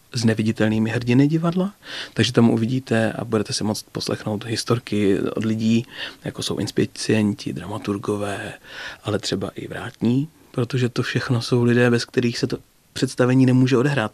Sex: male